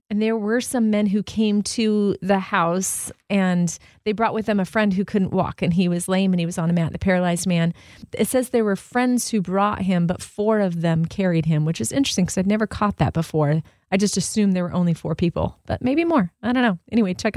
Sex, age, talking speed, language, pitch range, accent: female, 30-49, 250 wpm, English, 175-220 Hz, American